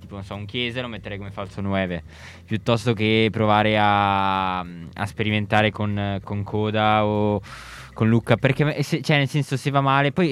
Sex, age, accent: male, 20-39, native